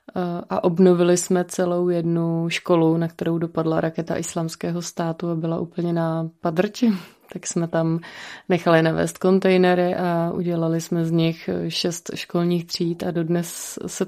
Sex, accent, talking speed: female, native, 145 wpm